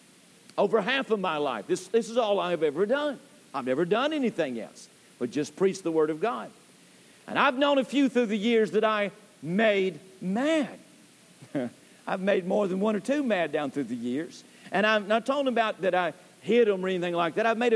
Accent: American